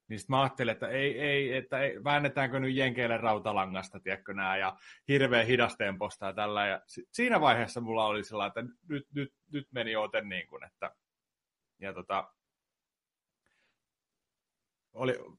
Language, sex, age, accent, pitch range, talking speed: Finnish, male, 30-49, native, 110-150 Hz, 135 wpm